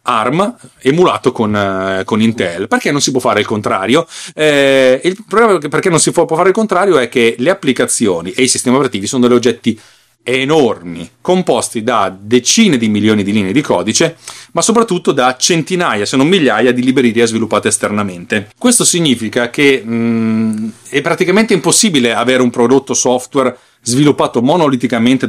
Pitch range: 115-165 Hz